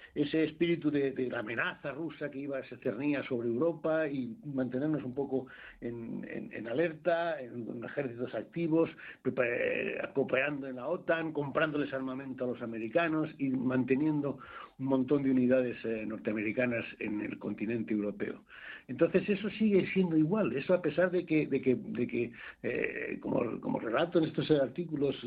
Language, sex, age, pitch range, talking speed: Spanish, male, 60-79, 130-160 Hz, 165 wpm